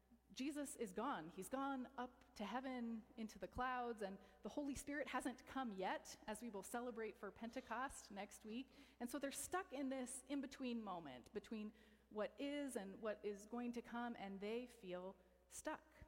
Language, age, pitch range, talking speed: English, 30-49, 190-255 Hz, 175 wpm